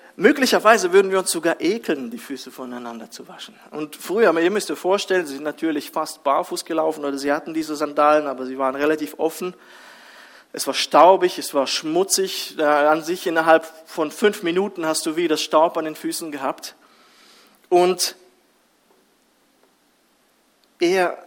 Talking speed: 155 wpm